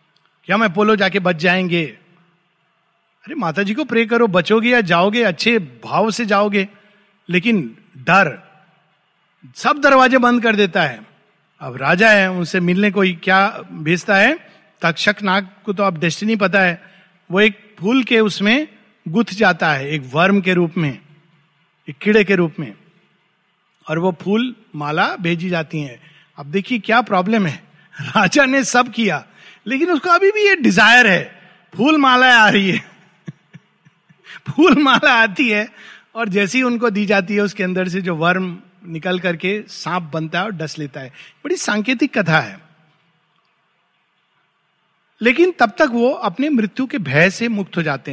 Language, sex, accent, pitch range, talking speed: Hindi, male, native, 170-220 Hz, 160 wpm